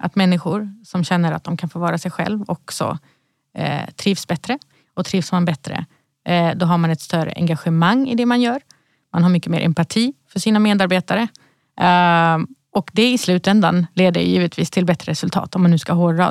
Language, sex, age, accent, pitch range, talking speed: Swedish, female, 30-49, native, 170-205 Hz, 195 wpm